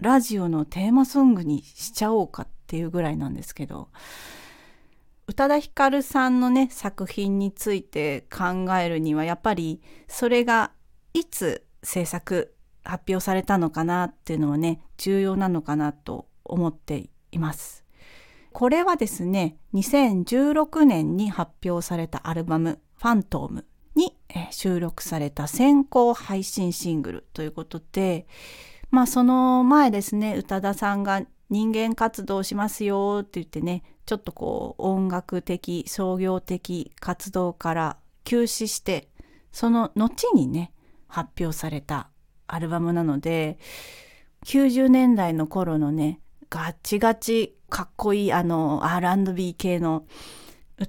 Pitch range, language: 165-230 Hz, Japanese